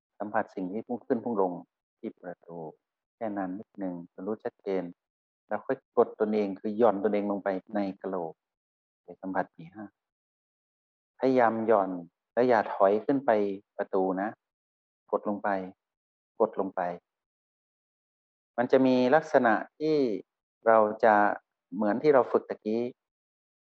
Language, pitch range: Thai, 95-115 Hz